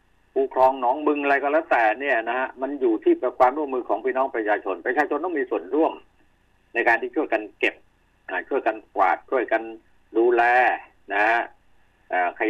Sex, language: male, Thai